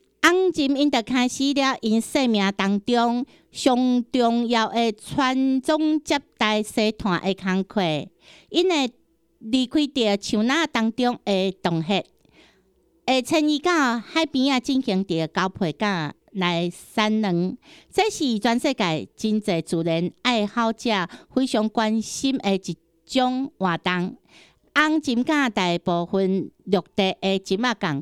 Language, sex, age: Chinese, female, 50-69